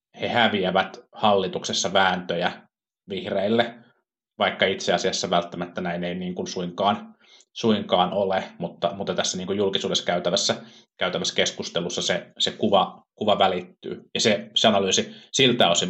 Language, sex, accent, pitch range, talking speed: Finnish, male, native, 90-120 Hz, 135 wpm